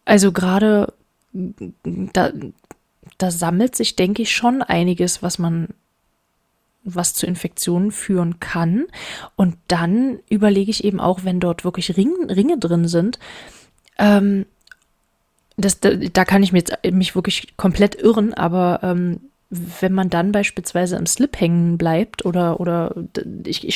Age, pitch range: 20-39, 180-220 Hz